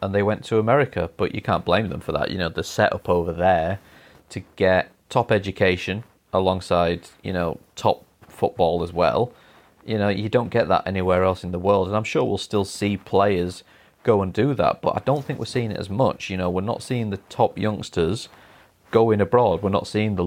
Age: 30-49